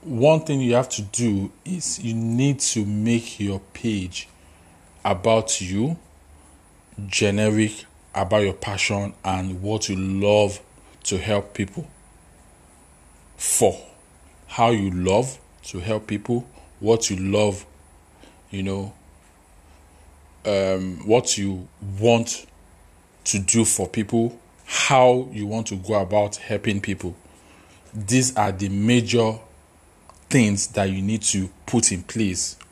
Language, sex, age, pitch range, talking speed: English, male, 40-59, 95-115 Hz, 120 wpm